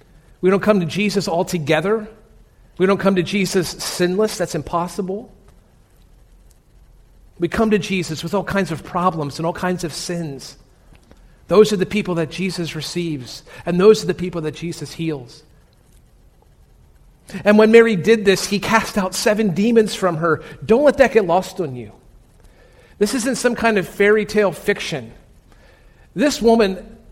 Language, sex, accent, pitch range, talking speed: English, male, American, 165-210 Hz, 160 wpm